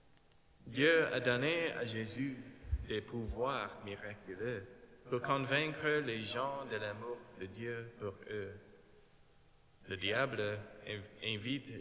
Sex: male